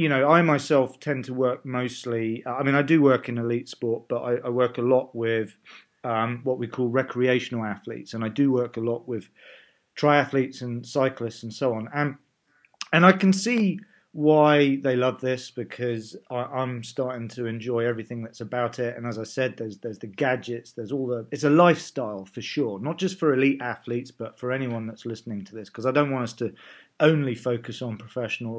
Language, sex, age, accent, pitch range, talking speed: English, male, 40-59, British, 120-145 Hz, 205 wpm